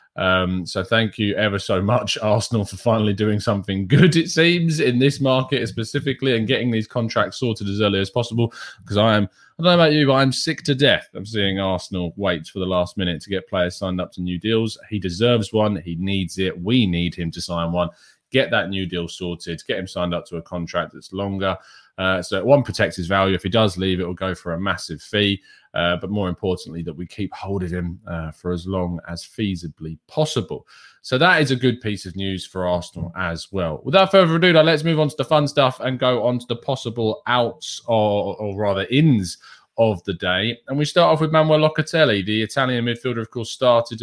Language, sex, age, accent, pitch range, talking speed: English, male, 20-39, British, 95-125 Hz, 230 wpm